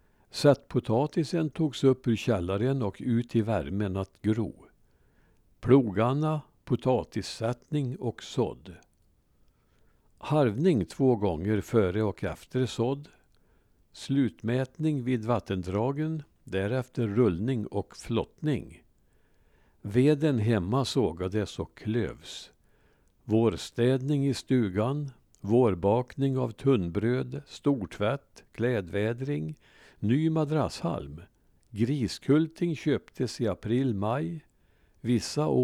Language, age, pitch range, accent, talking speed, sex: Swedish, 60-79, 105-140 Hz, Norwegian, 85 wpm, male